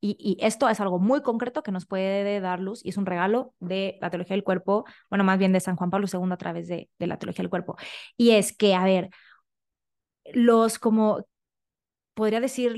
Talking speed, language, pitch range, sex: 215 wpm, Spanish, 185-225 Hz, female